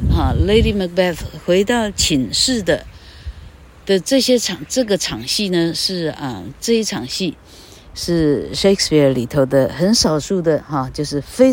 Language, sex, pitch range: Chinese, female, 140-220 Hz